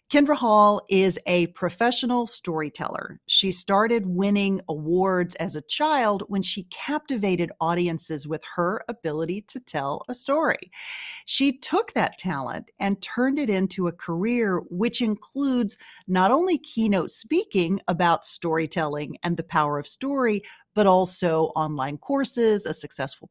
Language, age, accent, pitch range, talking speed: English, 40-59, American, 175-235 Hz, 135 wpm